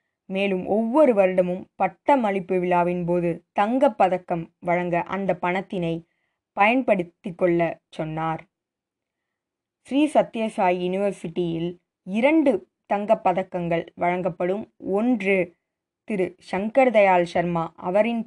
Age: 20-39